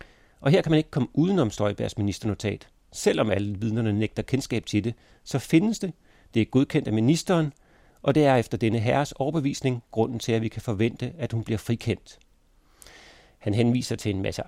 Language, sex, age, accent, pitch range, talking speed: Danish, male, 40-59, native, 110-135 Hz, 190 wpm